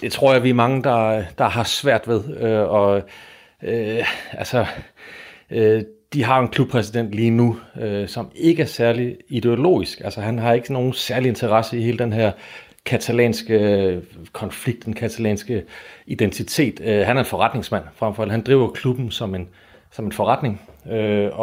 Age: 40-59